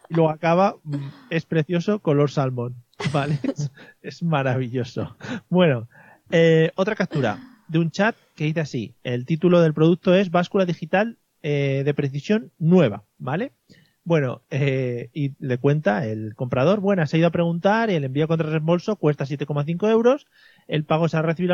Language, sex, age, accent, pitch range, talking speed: Spanish, male, 30-49, Spanish, 145-180 Hz, 165 wpm